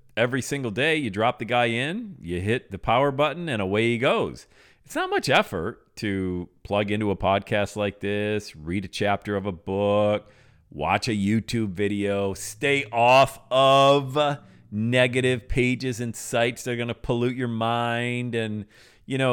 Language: English